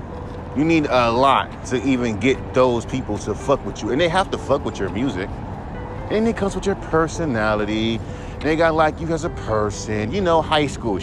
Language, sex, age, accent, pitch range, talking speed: English, male, 40-59, American, 110-165 Hz, 210 wpm